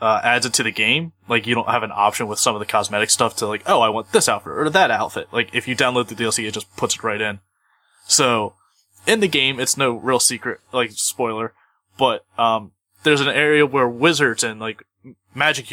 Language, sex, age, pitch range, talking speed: English, male, 20-39, 110-140 Hz, 230 wpm